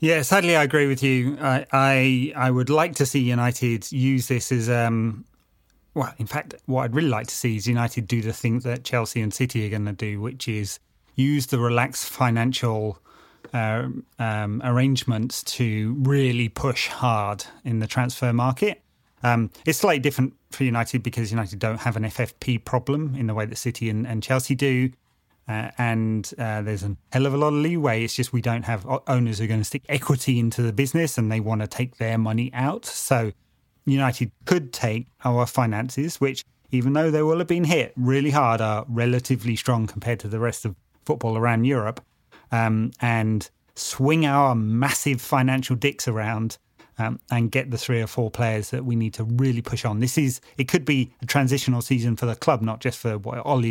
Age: 30-49